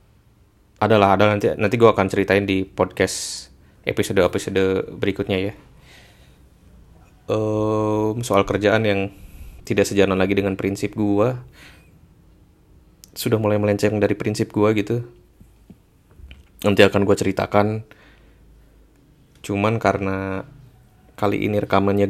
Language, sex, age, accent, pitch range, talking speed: Indonesian, male, 20-39, native, 95-105 Hz, 105 wpm